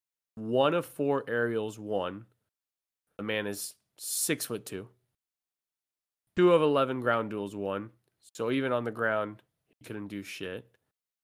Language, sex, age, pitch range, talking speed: English, male, 20-39, 110-135 Hz, 140 wpm